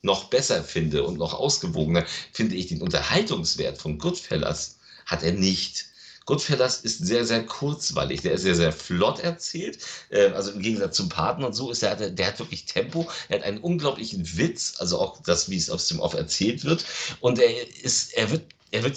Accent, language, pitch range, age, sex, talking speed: German, German, 110-150 Hz, 50-69, male, 195 wpm